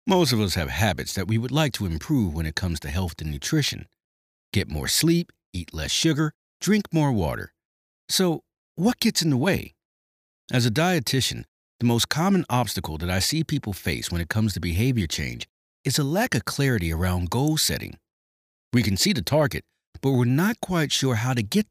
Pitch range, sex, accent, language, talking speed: 85-135 Hz, male, American, English, 200 wpm